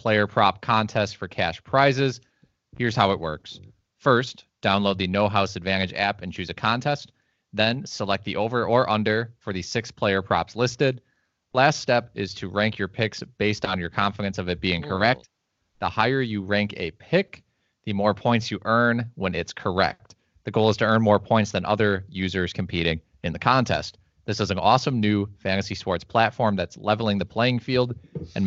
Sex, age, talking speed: male, 20-39, 190 wpm